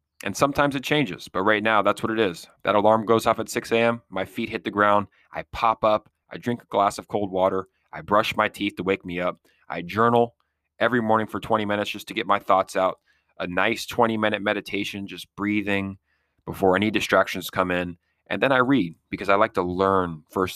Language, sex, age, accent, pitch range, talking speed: English, male, 30-49, American, 95-115 Hz, 220 wpm